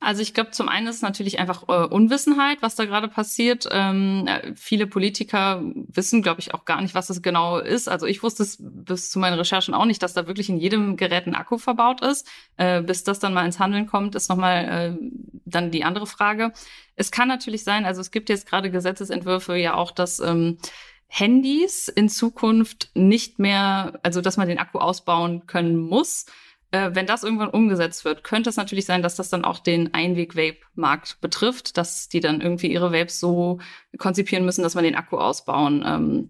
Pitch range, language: 175-215 Hz, German